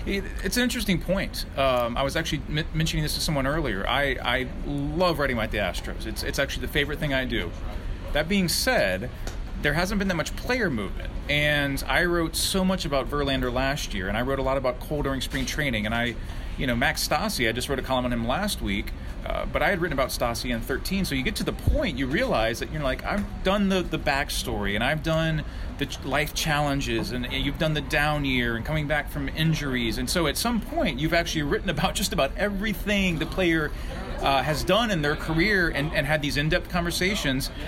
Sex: male